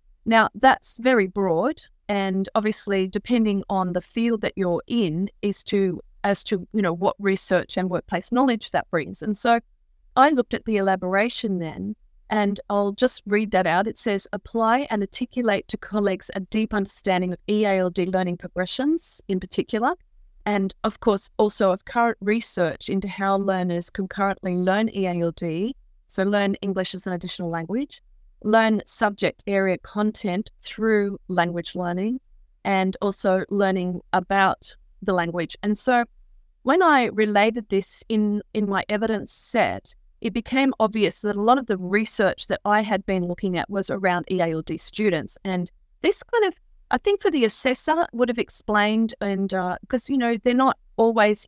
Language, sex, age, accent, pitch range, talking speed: English, female, 30-49, Australian, 185-220 Hz, 160 wpm